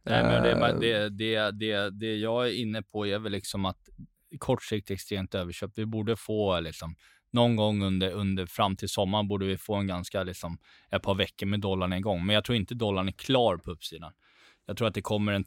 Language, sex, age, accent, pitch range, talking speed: Swedish, male, 20-39, native, 90-110 Hz, 215 wpm